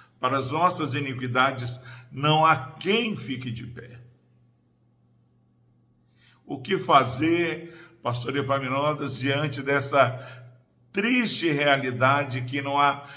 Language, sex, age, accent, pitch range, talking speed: Portuguese, male, 50-69, Brazilian, 120-150 Hz, 100 wpm